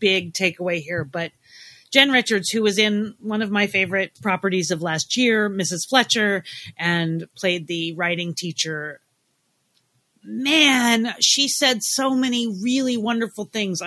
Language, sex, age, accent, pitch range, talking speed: English, female, 30-49, American, 165-210 Hz, 140 wpm